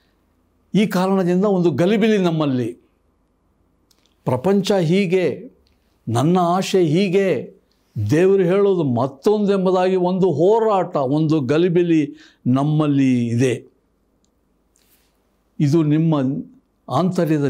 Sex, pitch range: male, 155-210 Hz